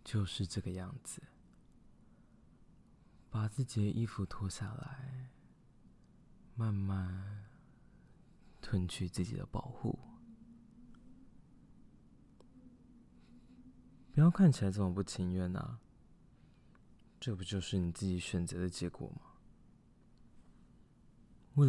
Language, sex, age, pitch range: Chinese, male, 20-39, 90-120 Hz